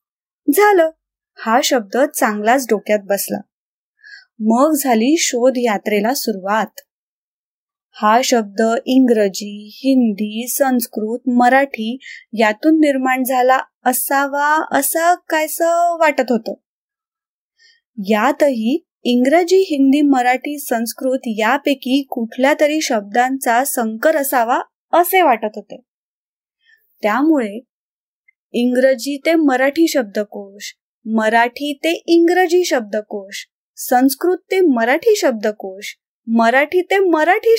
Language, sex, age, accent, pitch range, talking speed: Marathi, female, 20-39, native, 235-330 Hz, 80 wpm